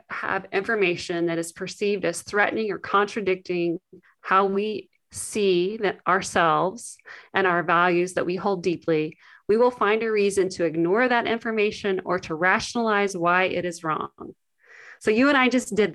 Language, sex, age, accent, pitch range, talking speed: English, female, 30-49, American, 175-210 Hz, 160 wpm